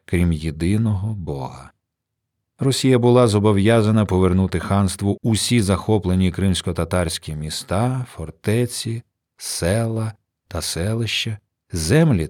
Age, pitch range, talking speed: 40-59, 90-115 Hz, 85 wpm